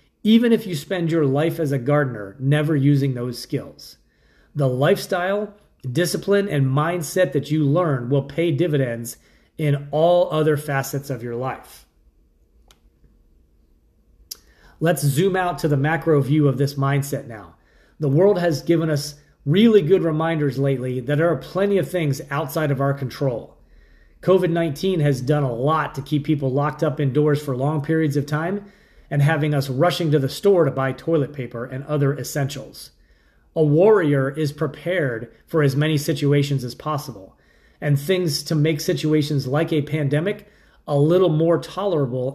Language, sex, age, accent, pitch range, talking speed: English, male, 30-49, American, 130-165 Hz, 160 wpm